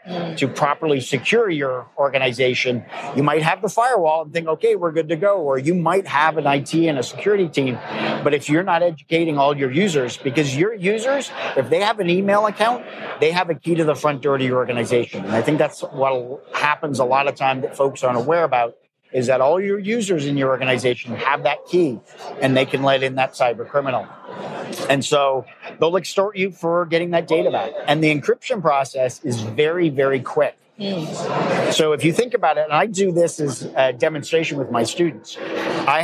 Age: 50-69